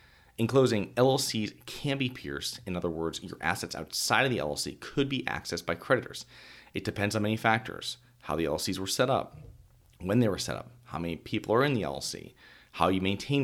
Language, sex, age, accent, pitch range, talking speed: English, male, 40-59, American, 90-120 Hz, 205 wpm